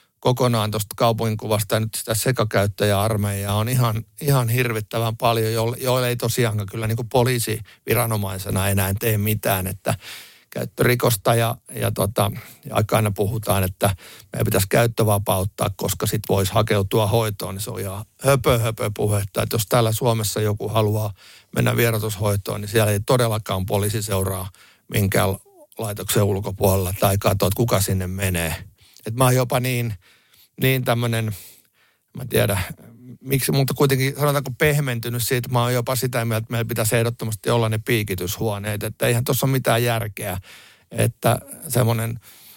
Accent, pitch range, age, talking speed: native, 105-120 Hz, 60-79, 140 wpm